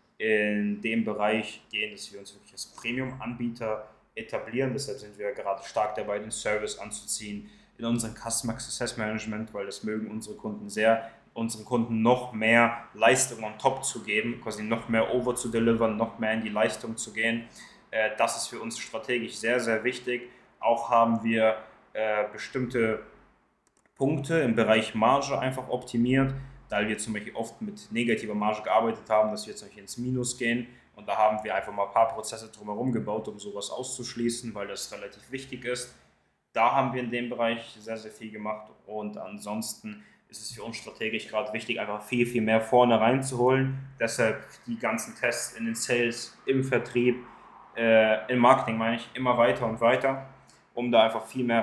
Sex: male